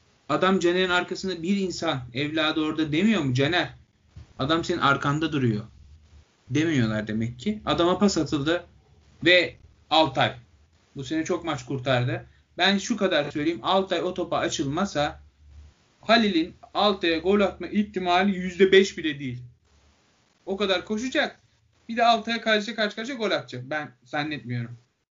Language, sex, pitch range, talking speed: Turkish, male, 150-220 Hz, 135 wpm